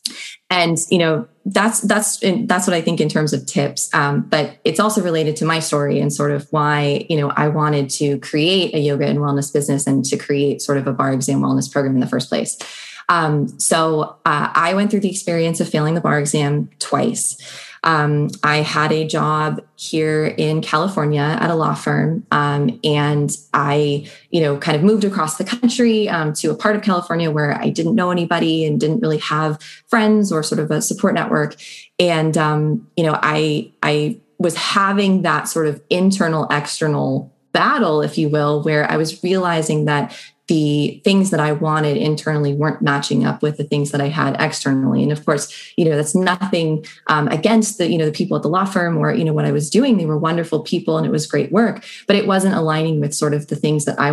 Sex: female